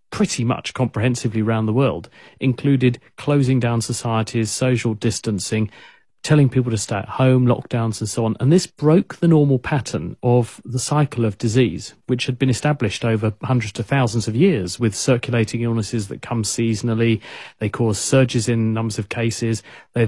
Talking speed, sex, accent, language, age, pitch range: 170 wpm, male, British, English, 40-59, 110-130 Hz